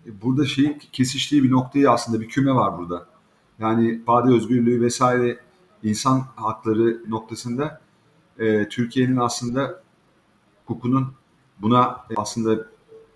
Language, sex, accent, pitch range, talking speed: Turkish, male, native, 115-145 Hz, 105 wpm